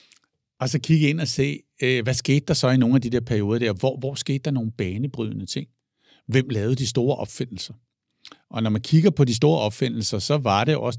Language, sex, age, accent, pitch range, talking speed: Danish, male, 60-79, native, 100-130 Hz, 225 wpm